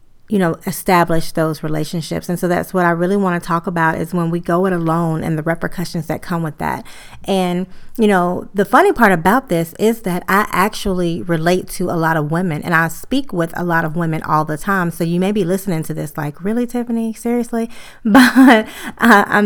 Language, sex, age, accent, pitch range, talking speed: English, female, 30-49, American, 165-200 Hz, 215 wpm